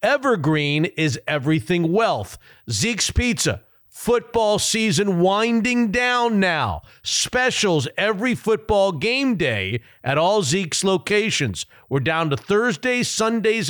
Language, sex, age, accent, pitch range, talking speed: English, male, 50-69, American, 145-210 Hz, 110 wpm